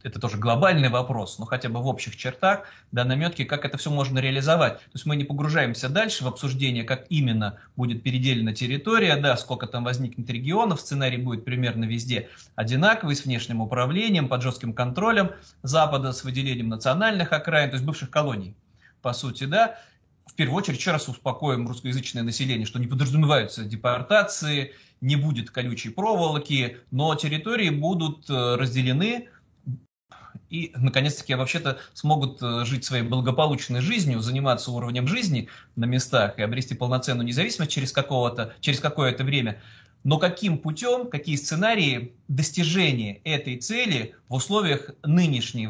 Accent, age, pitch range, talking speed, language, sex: native, 30-49, 125-155 Hz, 145 wpm, Russian, male